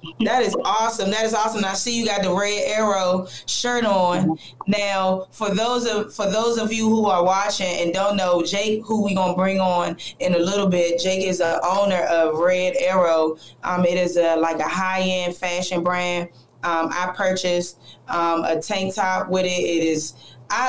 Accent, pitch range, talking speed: American, 175-200 Hz, 205 wpm